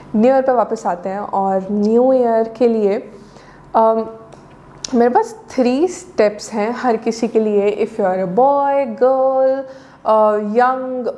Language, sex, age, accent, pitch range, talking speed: Hindi, female, 20-39, native, 205-255 Hz, 150 wpm